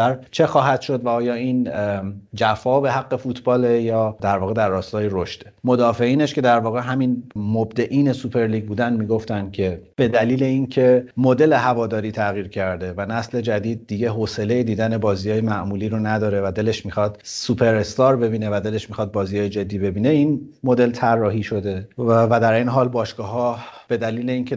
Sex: male